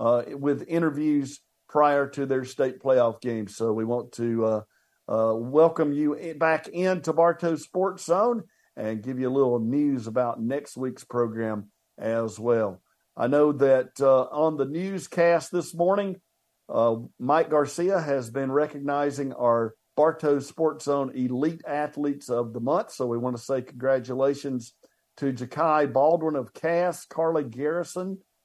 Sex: male